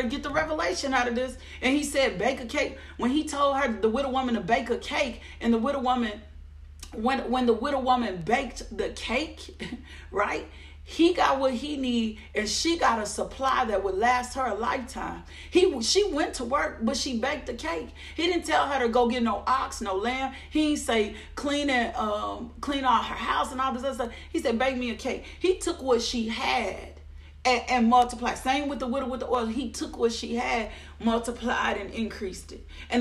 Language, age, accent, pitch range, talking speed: English, 40-59, American, 220-265 Hz, 215 wpm